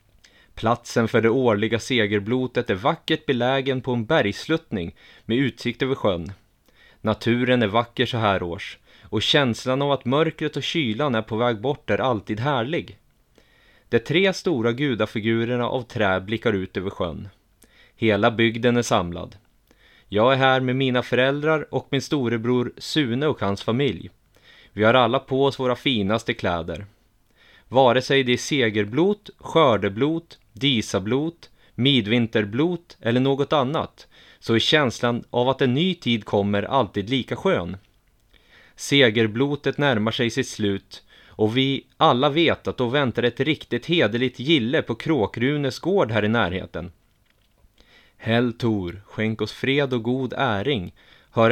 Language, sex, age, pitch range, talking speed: Swedish, male, 20-39, 110-135 Hz, 145 wpm